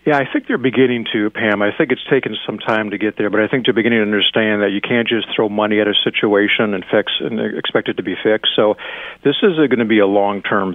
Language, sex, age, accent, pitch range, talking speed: English, male, 50-69, American, 100-110 Hz, 270 wpm